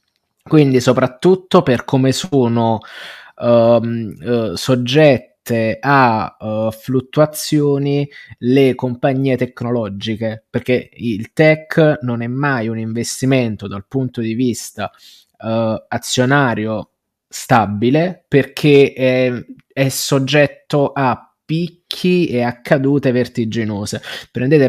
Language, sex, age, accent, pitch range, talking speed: Italian, male, 20-39, native, 120-140 Hz, 85 wpm